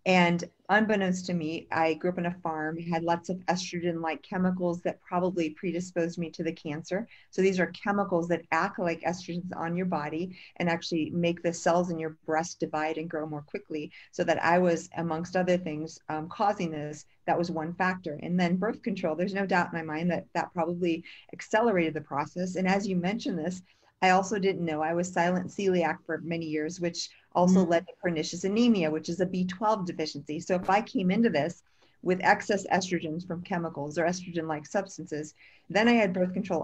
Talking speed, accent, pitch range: 200 wpm, American, 165-185 Hz